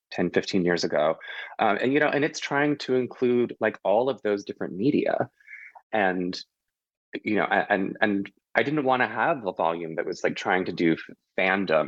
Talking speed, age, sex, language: 180 wpm, 20-39, male, English